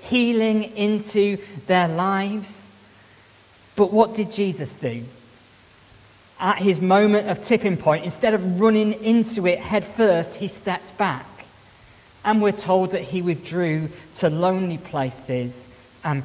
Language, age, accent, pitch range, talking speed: English, 40-59, British, 155-215 Hz, 130 wpm